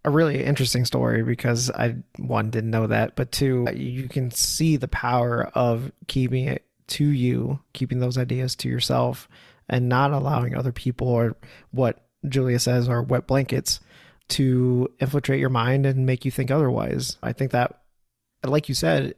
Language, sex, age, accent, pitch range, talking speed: English, male, 30-49, American, 120-135 Hz, 170 wpm